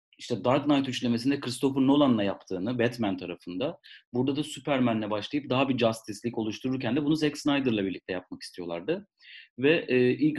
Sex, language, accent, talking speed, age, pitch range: male, Turkish, native, 155 wpm, 40-59, 110-145 Hz